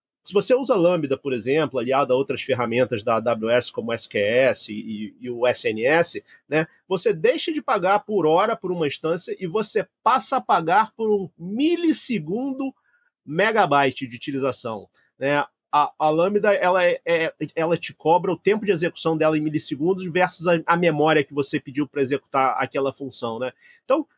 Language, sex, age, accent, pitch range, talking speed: Portuguese, male, 30-49, Brazilian, 150-220 Hz, 175 wpm